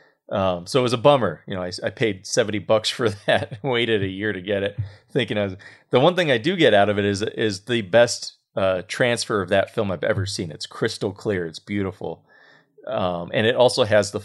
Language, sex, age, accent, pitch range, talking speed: English, male, 30-49, American, 95-120 Hz, 250 wpm